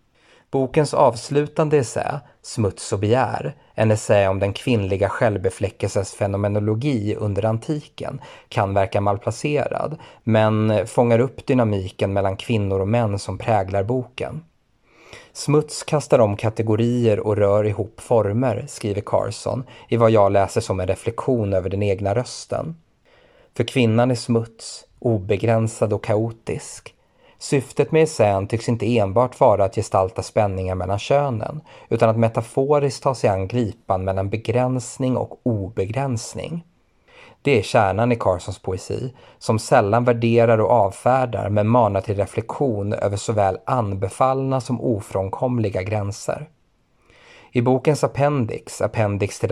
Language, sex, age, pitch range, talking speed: Swedish, male, 30-49, 100-125 Hz, 130 wpm